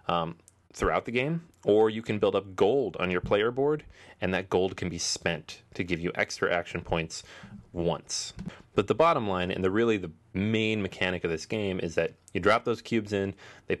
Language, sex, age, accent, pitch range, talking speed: English, male, 30-49, American, 90-115 Hz, 210 wpm